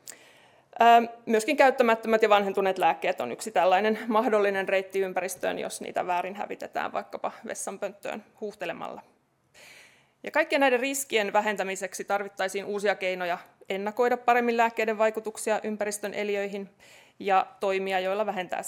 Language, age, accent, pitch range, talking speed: Finnish, 30-49, native, 195-230 Hz, 110 wpm